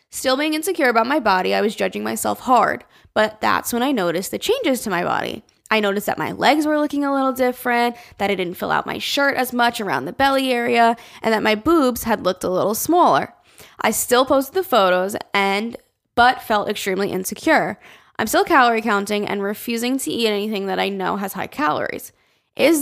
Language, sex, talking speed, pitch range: English, female, 210 wpm, 200-255 Hz